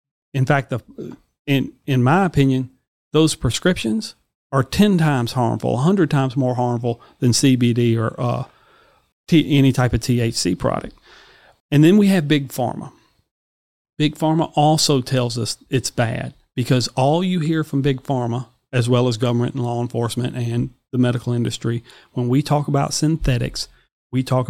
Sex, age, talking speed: male, 40-59, 160 wpm